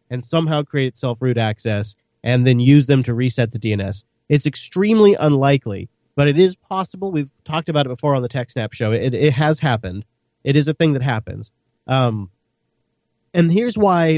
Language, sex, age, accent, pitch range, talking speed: English, male, 30-49, American, 120-160 Hz, 180 wpm